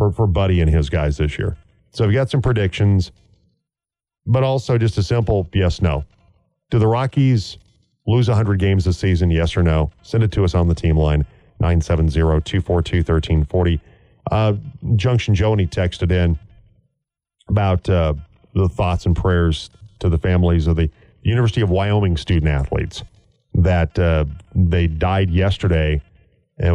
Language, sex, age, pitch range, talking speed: English, male, 40-59, 85-105 Hz, 155 wpm